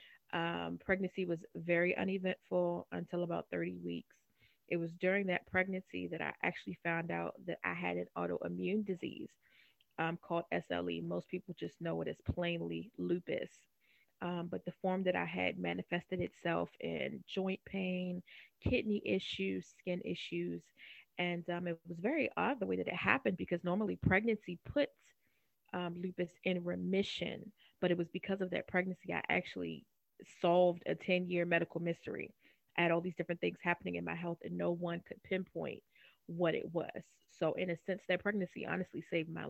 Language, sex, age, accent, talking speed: English, female, 20-39, American, 170 wpm